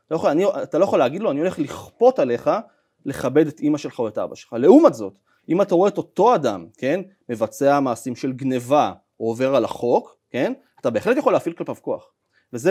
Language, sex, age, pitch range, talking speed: Hebrew, male, 30-49, 115-165 Hz, 210 wpm